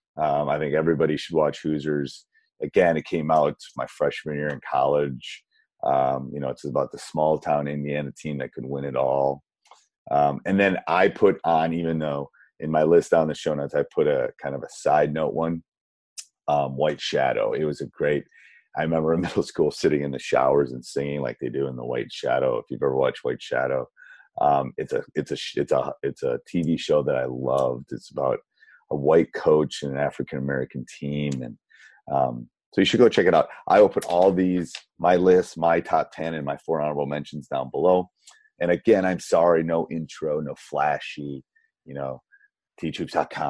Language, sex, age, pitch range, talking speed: English, male, 30-49, 70-90 Hz, 205 wpm